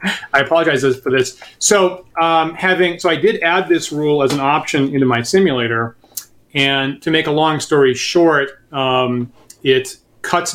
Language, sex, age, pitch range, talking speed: English, male, 30-49, 125-160 Hz, 165 wpm